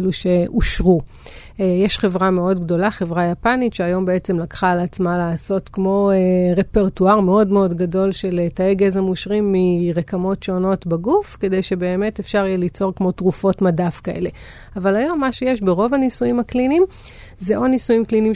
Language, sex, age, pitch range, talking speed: Hebrew, female, 30-49, 180-210 Hz, 150 wpm